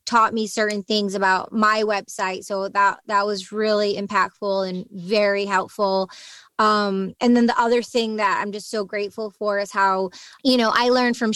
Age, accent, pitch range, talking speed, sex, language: 20-39, American, 205-240 Hz, 185 wpm, female, English